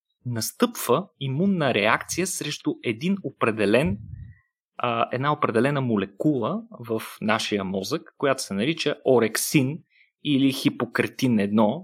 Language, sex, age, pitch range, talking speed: Bulgarian, male, 30-49, 115-175 Hz, 100 wpm